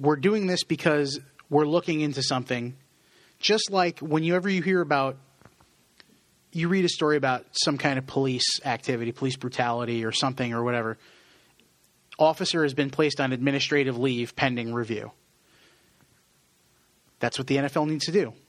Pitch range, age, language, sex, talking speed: 135-170 Hz, 30-49, English, male, 150 wpm